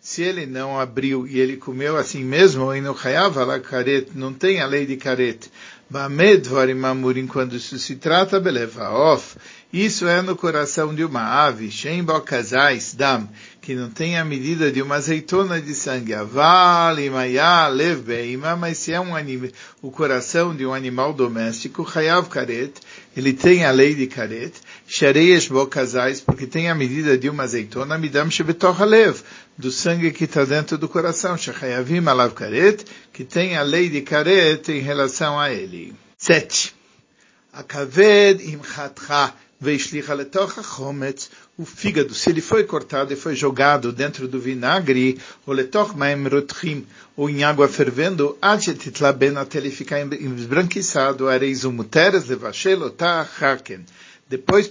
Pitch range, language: 130-165 Hz, Turkish